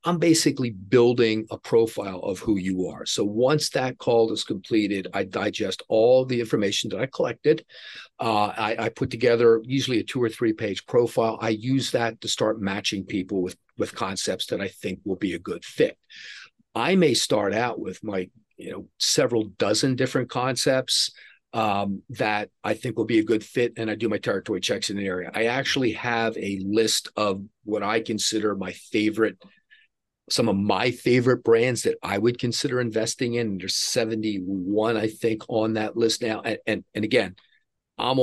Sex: male